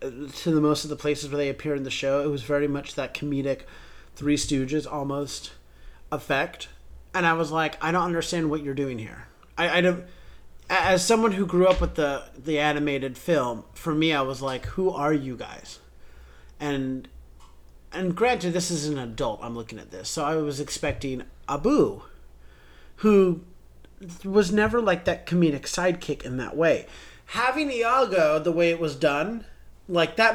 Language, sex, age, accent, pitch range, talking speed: English, male, 30-49, American, 135-175 Hz, 180 wpm